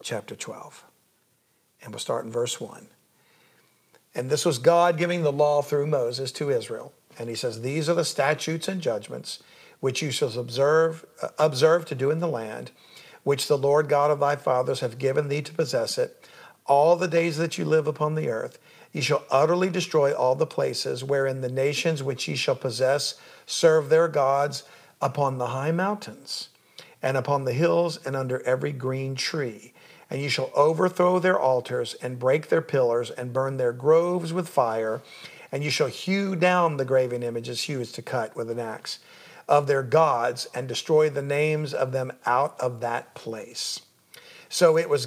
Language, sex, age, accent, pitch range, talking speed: English, male, 50-69, American, 130-170 Hz, 180 wpm